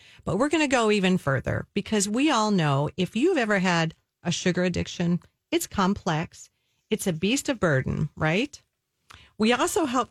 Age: 40-59